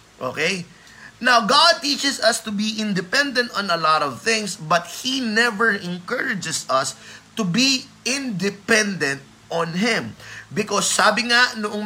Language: Filipino